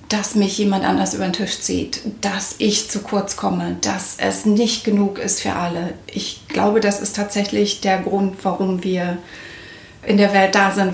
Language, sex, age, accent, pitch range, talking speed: German, female, 30-49, German, 185-215 Hz, 185 wpm